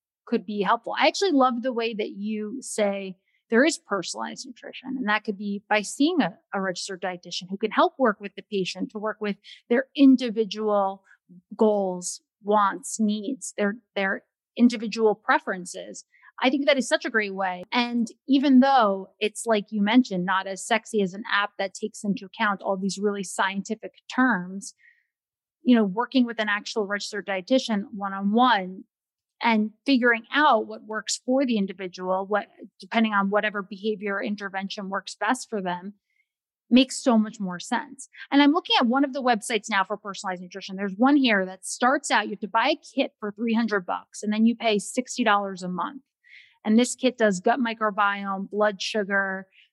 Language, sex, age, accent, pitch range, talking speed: English, female, 30-49, American, 200-250 Hz, 180 wpm